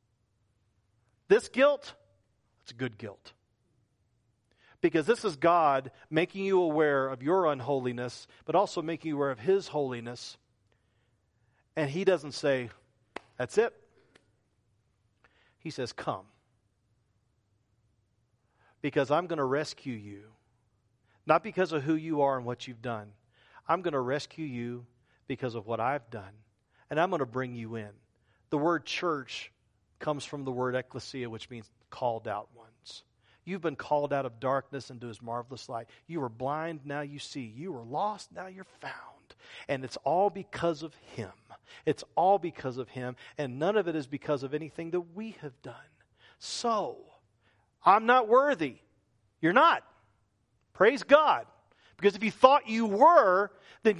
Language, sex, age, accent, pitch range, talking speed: English, male, 40-59, American, 115-165 Hz, 155 wpm